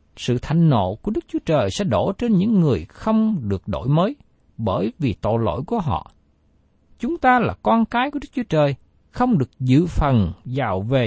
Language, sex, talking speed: Vietnamese, male, 200 wpm